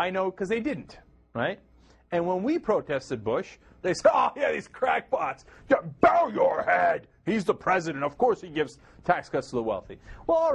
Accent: American